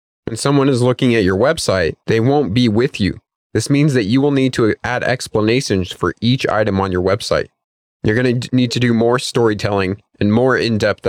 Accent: American